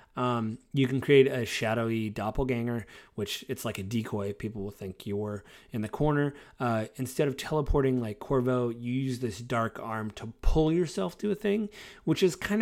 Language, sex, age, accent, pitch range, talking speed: English, male, 30-49, American, 105-135 Hz, 190 wpm